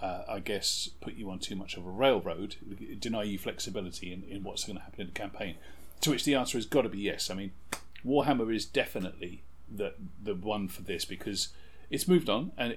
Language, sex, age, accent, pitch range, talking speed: English, male, 40-59, British, 80-110 Hz, 220 wpm